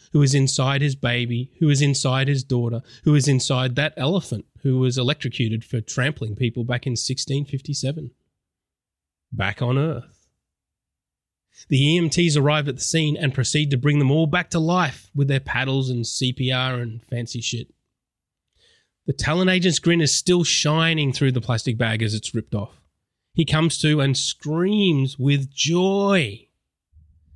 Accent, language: Australian, English